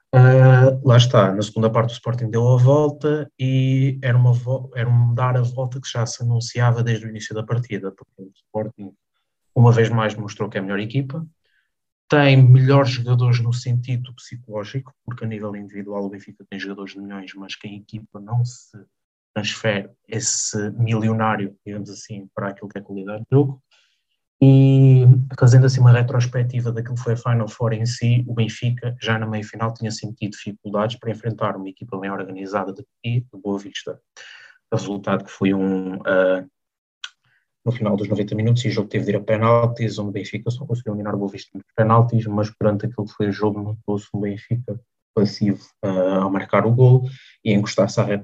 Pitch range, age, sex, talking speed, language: 105-120 Hz, 20-39, male, 190 wpm, Portuguese